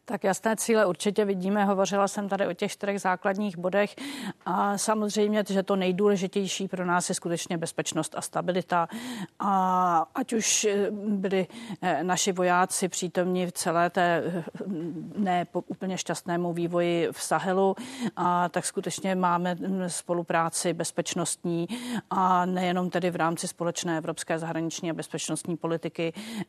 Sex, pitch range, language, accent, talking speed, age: female, 165-185 Hz, Czech, native, 130 wpm, 40-59